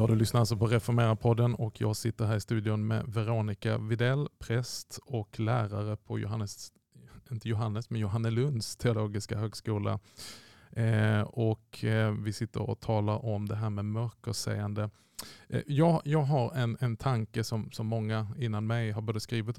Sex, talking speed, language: male, 170 wpm, Swedish